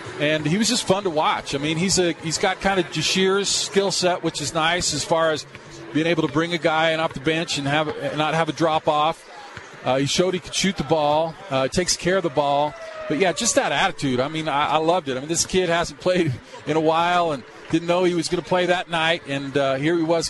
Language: English